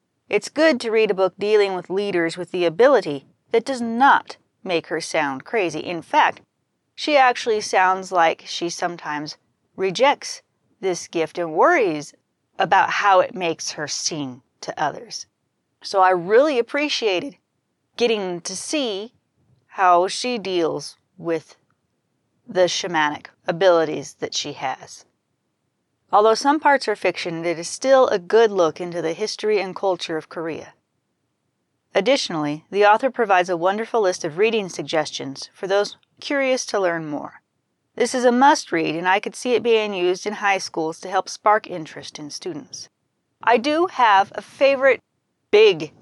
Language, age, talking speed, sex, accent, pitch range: English, 30-49, 155 wpm, female, American, 170-230 Hz